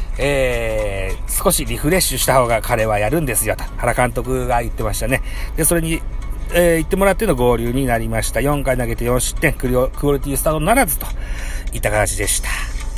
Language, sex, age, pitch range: Japanese, male, 40-59, 105-155 Hz